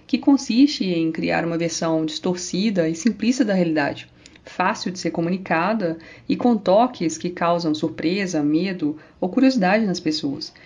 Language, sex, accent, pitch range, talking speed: Portuguese, female, Brazilian, 165-225 Hz, 145 wpm